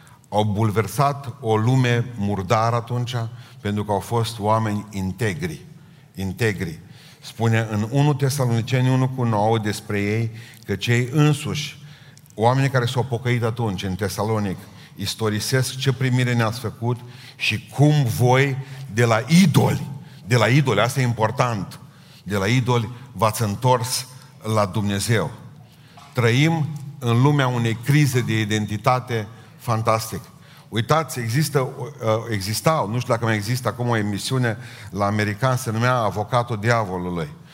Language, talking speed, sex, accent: Romanian, 130 wpm, male, native